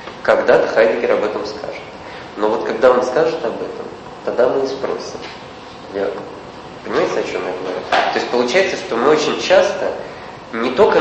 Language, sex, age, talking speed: Russian, male, 20-39, 170 wpm